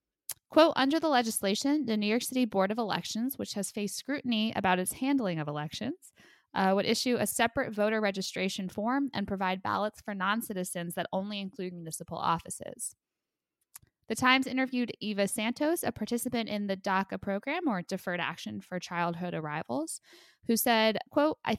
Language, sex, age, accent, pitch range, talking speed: English, female, 10-29, American, 180-240 Hz, 165 wpm